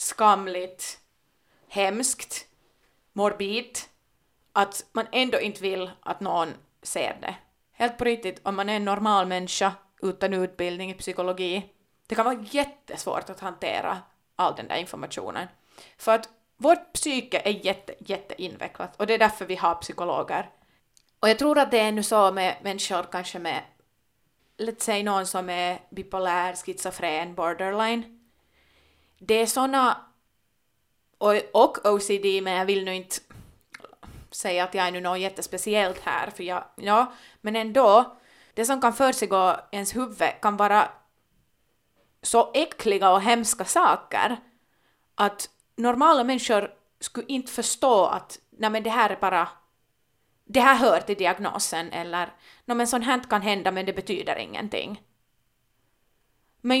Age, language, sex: 30-49, Finnish, female